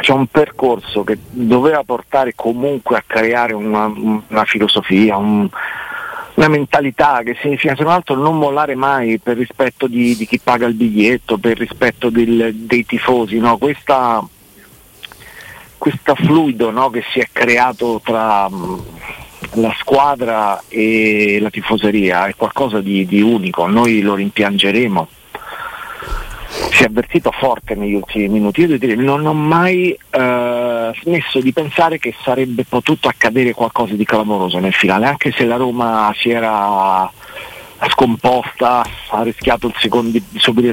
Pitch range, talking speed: 110-135 Hz, 140 wpm